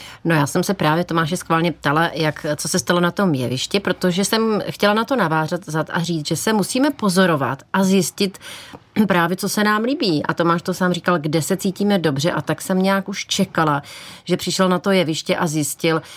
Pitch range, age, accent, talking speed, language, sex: 155-190 Hz, 30-49, native, 210 wpm, Czech, female